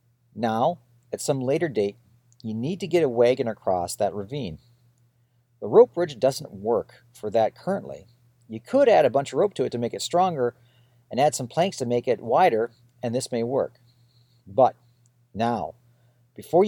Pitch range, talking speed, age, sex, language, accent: 120-150 Hz, 180 wpm, 40-59, male, English, American